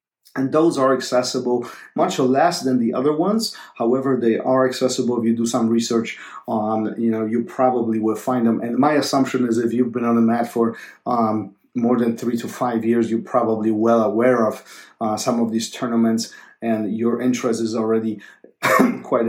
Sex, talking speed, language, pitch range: male, 190 wpm, English, 115-130 Hz